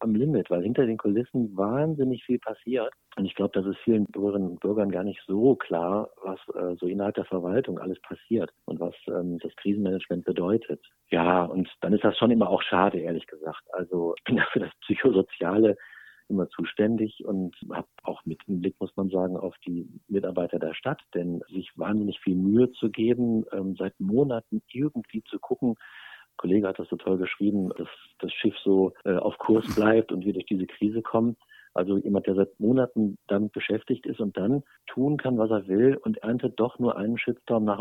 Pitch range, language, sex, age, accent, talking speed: 95-115 Hz, German, male, 50-69, German, 190 wpm